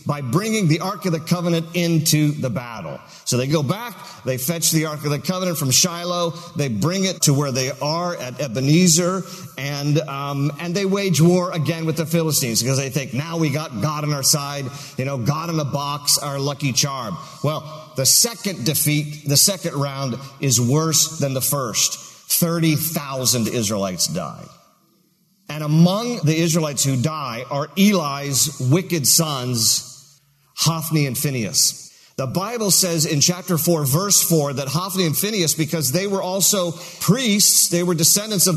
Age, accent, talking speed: 50-69, American, 170 wpm